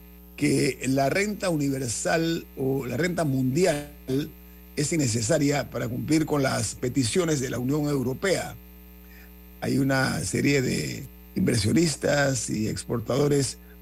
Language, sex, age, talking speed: Spanish, male, 50-69, 115 wpm